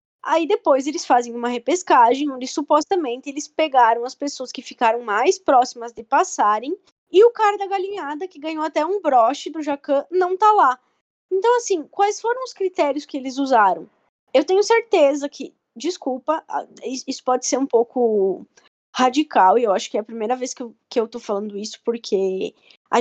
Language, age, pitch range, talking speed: Portuguese, 10-29, 255-335 Hz, 180 wpm